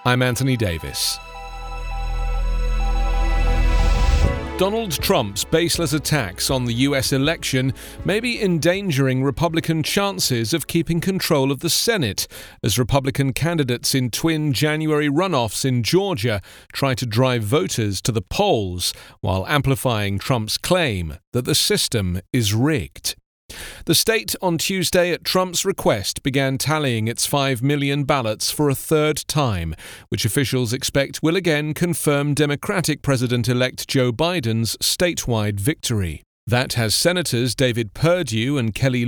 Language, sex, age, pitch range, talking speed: English, male, 40-59, 115-160 Hz, 125 wpm